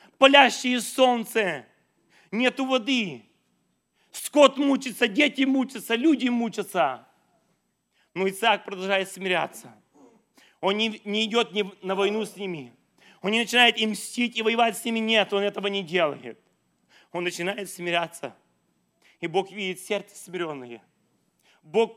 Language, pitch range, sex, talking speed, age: English, 165-225 Hz, male, 115 wpm, 30-49